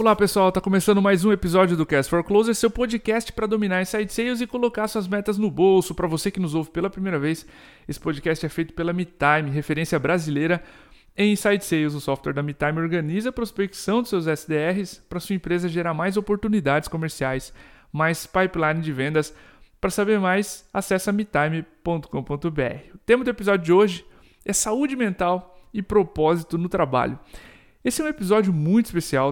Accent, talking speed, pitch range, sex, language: Brazilian, 180 wpm, 150-195 Hz, male, Portuguese